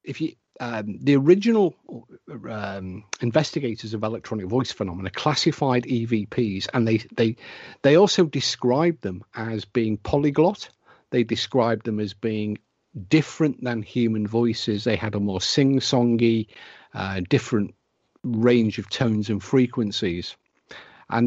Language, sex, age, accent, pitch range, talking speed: English, male, 50-69, British, 105-130 Hz, 125 wpm